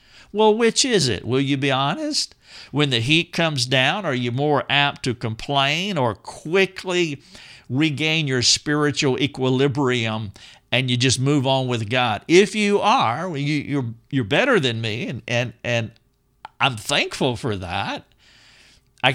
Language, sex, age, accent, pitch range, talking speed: English, male, 50-69, American, 120-150 Hz, 145 wpm